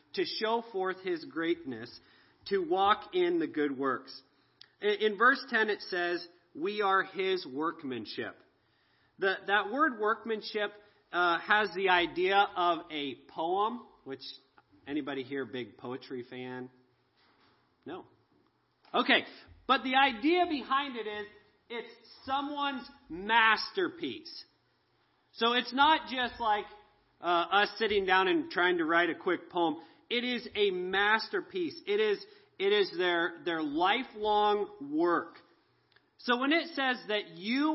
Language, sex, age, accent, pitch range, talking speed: English, male, 40-59, American, 185-285 Hz, 130 wpm